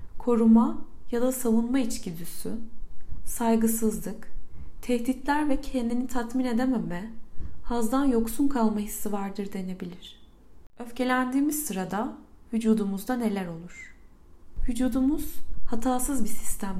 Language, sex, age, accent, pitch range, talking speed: Turkish, female, 30-49, native, 190-250 Hz, 95 wpm